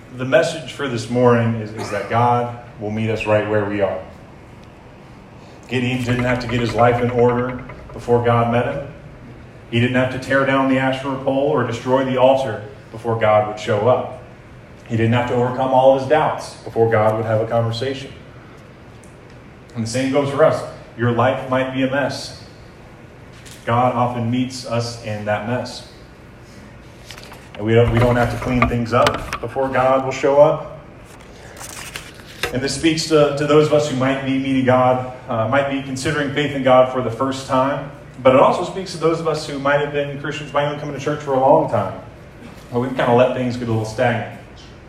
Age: 30-49